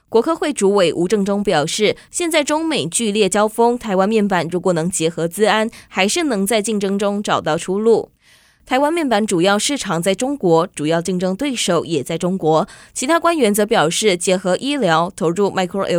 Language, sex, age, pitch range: Chinese, female, 20-39, 175-235 Hz